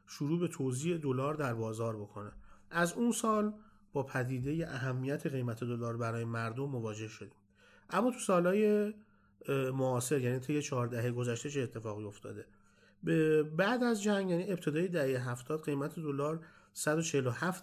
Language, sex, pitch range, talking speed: Persian, male, 115-150 Hz, 135 wpm